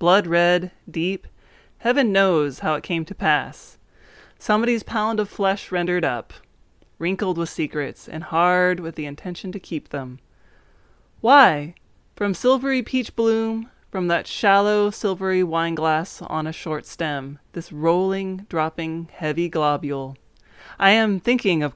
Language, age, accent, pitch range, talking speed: English, 20-39, American, 150-190 Hz, 140 wpm